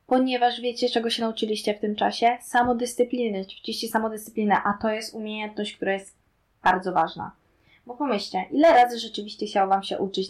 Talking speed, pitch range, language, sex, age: 165 wpm, 195-225 Hz, Polish, female, 20-39